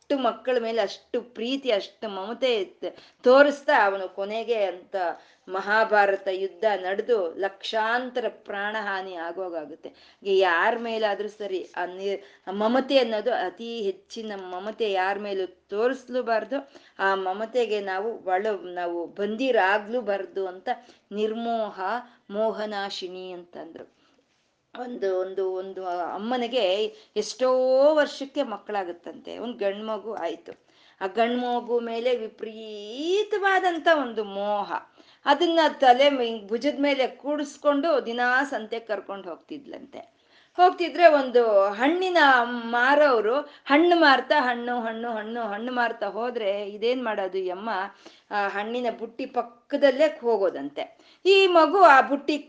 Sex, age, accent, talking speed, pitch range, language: female, 20-39, native, 105 wpm, 200-275 Hz, Kannada